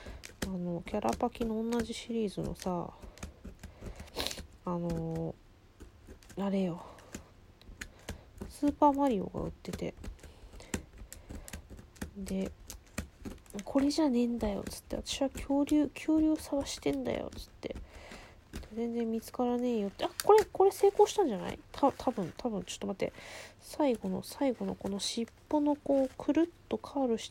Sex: female